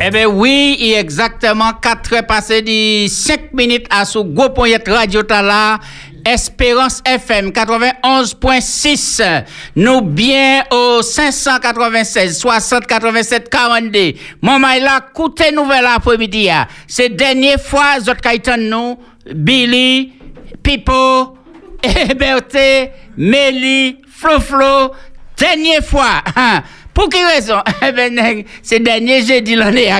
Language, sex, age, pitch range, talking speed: French, male, 60-79, 225-270 Hz, 105 wpm